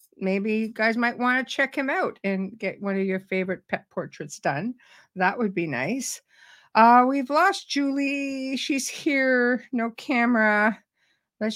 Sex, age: female, 50-69